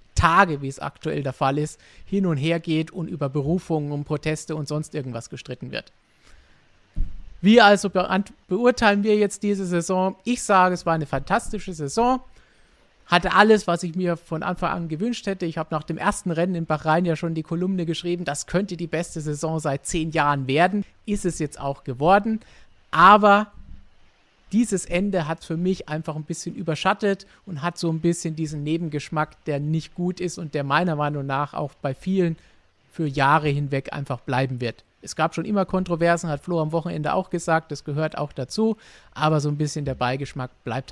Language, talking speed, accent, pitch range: German, 190 wpm, German, 145-185 Hz